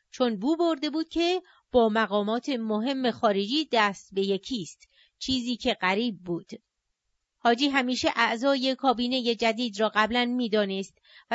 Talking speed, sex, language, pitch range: 130 wpm, female, Persian, 225-295 Hz